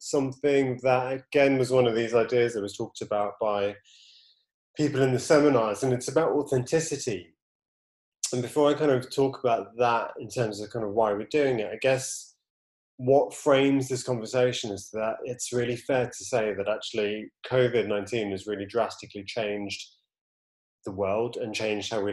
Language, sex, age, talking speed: English, male, 20-39, 175 wpm